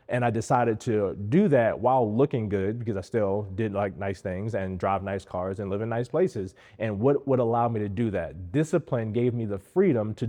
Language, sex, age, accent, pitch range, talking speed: English, male, 30-49, American, 115-140 Hz, 225 wpm